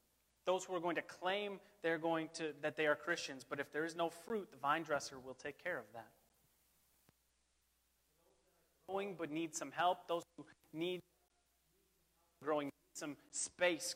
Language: English